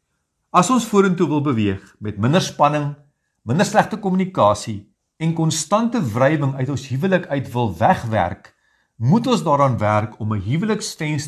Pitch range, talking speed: 125-180 Hz, 155 wpm